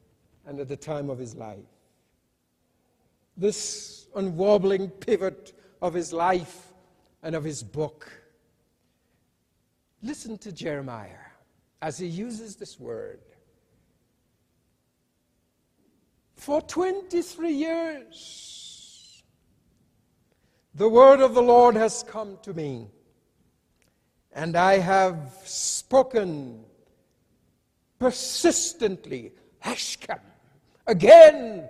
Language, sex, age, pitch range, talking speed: English, male, 60-79, 180-265 Hz, 80 wpm